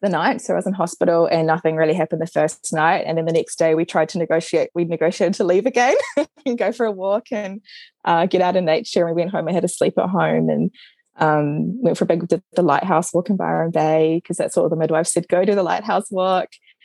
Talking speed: 265 wpm